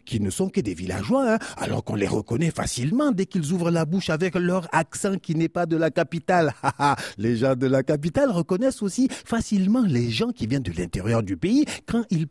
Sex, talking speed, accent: male, 215 wpm, French